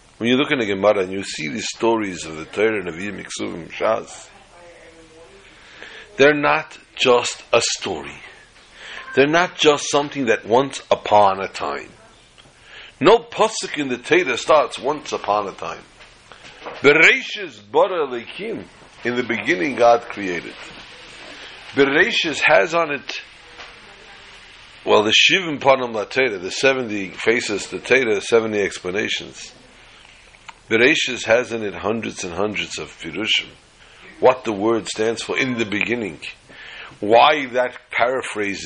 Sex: male